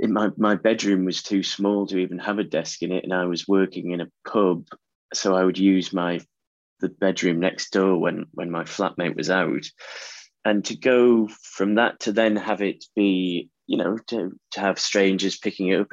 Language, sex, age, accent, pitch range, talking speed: English, male, 20-39, British, 90-105 Hz, 205 wpm